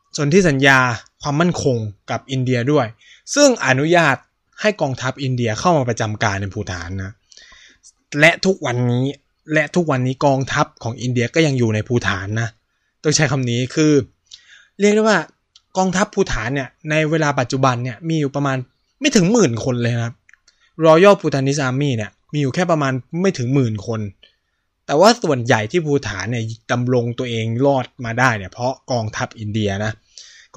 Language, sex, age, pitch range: Thai, male, 20-39, 120-155 Hz